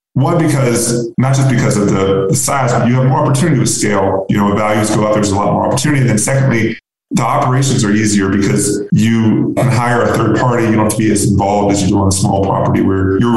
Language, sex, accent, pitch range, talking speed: English, male, American, 100-115 Hz, 250 wpm